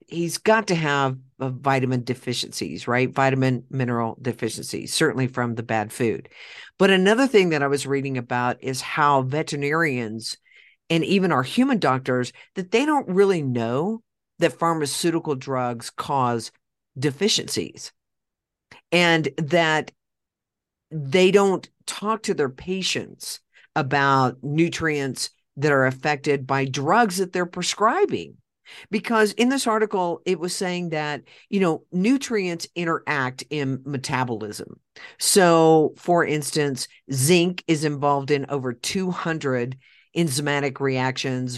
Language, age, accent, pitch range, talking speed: English, 50-69, American, 130-175 Hz, 125 wpm